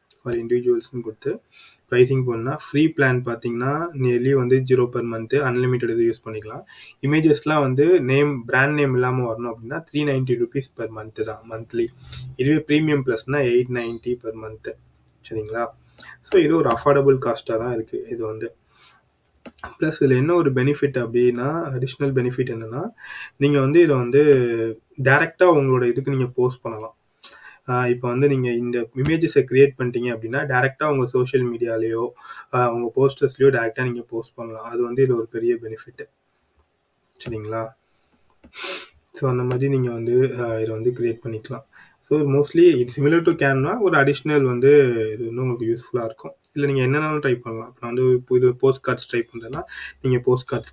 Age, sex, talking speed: 20-39, male, 155 wpm